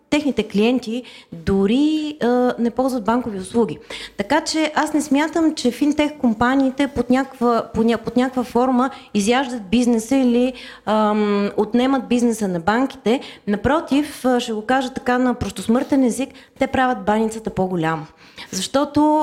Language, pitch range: English, 215-270 Hz